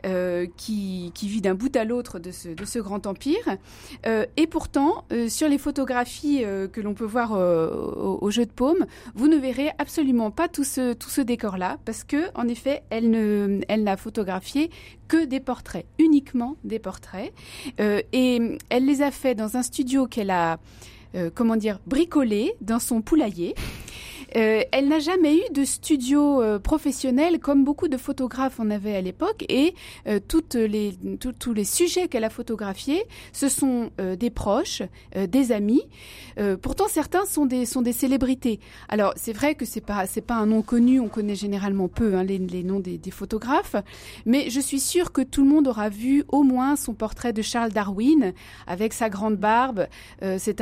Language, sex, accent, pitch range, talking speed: French, female, French, 205-275 Hz, 195 wpm